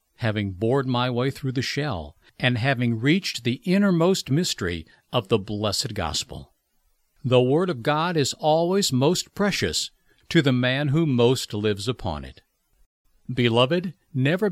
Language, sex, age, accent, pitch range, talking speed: English, male, 60-79, American, 115-160 Hz, 145 wpm